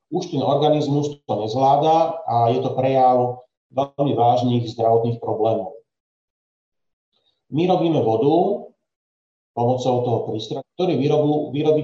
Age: 40-59